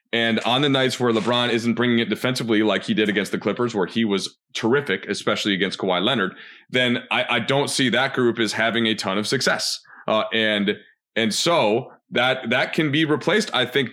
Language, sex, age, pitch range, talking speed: English, male, 30-49, 105-130 Hz, 205 wpm